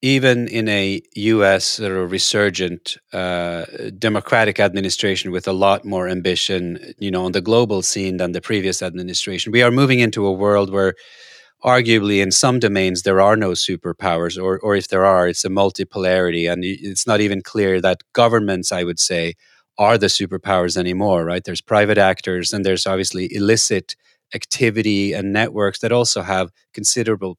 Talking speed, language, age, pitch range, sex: 170 wpm, English, 30-49, 95-115 Hz, male